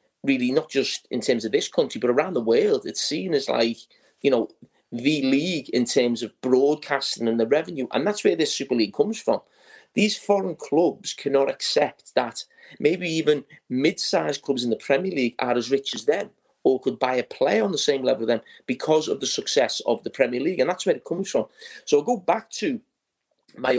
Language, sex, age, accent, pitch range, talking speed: English, male, 30-49, British, 125-195 Hz, 210 wpm